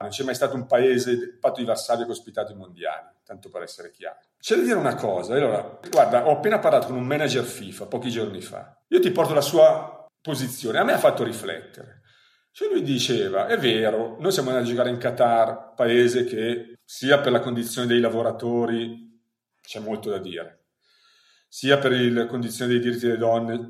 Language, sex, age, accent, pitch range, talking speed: Italian, male, 40-59, native, 115-145 Hz, 190 wpm